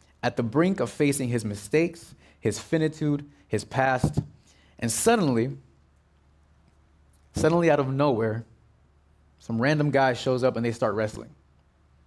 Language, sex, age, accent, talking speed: English, male, 30-49, American, 130 wpm